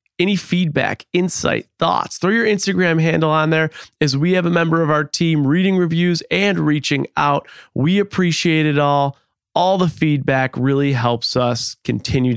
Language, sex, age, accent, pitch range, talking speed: English, male, 30-49, American, 125-170 Hz, 165 wpm